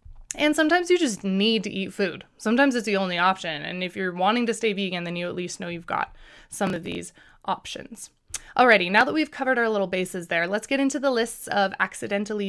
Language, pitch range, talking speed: English, 195-265 Hz, 225 wpm